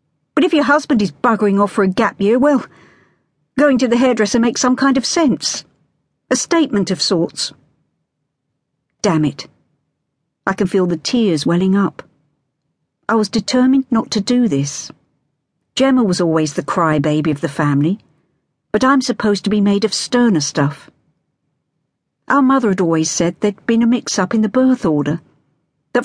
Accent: British